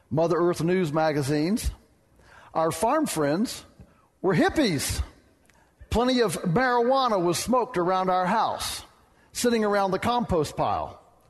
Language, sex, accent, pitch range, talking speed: English, male, American, 145-185 Hz, 115 wpm